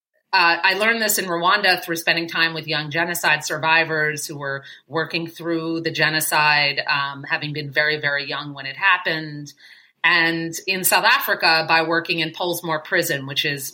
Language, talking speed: English, 170 wpm